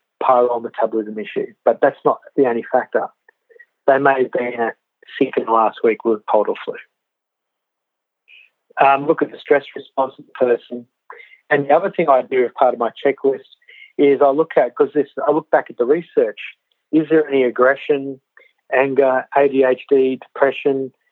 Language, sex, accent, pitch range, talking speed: English, male, Australian, 125-170 Hz, 170 wpm